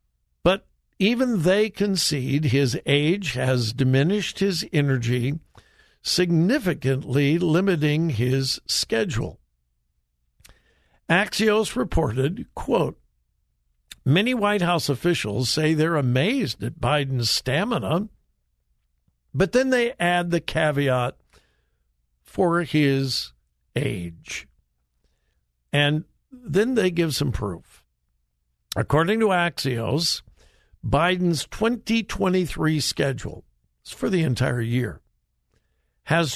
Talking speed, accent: 85 wpm, American